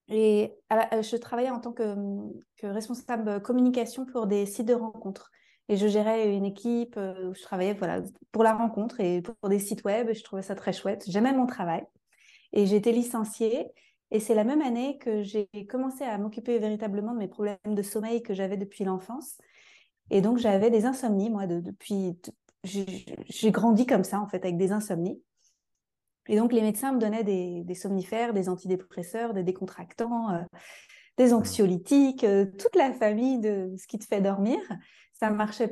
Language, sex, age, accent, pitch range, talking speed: French, female, 30-49, French, 200-235 Hz, 185 wpm